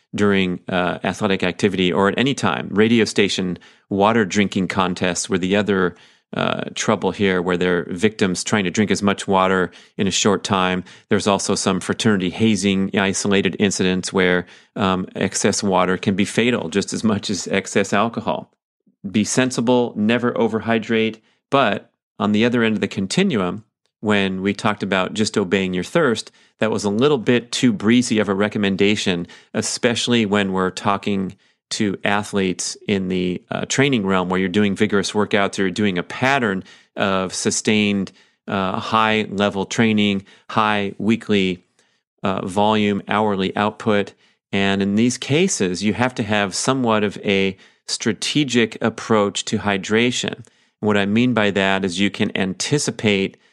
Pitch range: 95-110 Hz